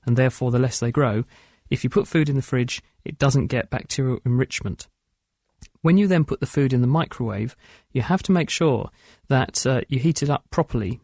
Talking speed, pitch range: 210 wpm, 120-150 Hz